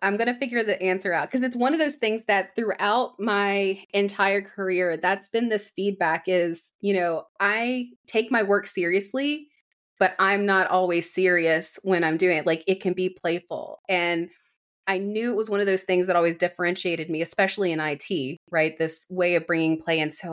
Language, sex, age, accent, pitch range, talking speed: English, female, 20-39, American, 170-210 Hz, 200 wpm